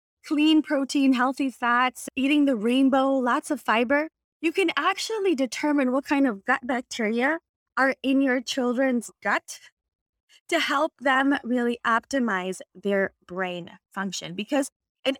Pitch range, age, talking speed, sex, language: 205-270 Hz, 20-39, 135 wpm, female, English